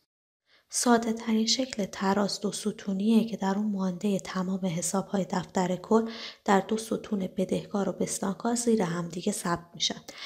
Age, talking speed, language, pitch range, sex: 20-39, 140 wpm, Persian, 180-215 Hz, female